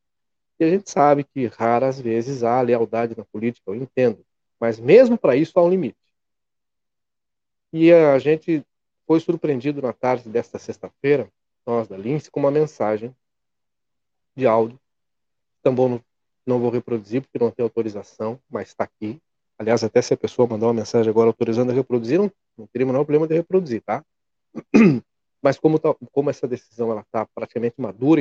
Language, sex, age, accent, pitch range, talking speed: Portuguese, male, 40-59, Brazilian, 115-155 Hz, 170 wpm